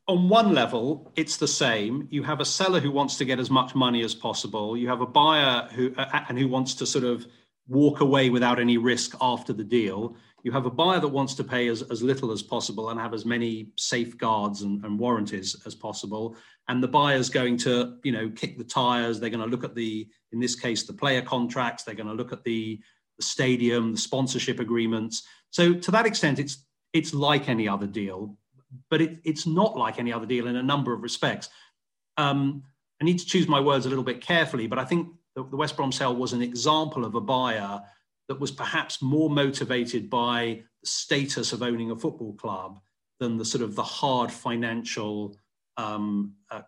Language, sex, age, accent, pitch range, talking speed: English, male, 40-59, British, 115-140 Hz, 210 wpm